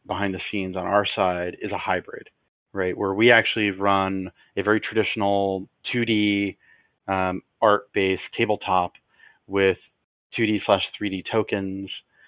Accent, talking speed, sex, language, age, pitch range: American, 125 wpm, male, English, 30-49, 95-115 Hz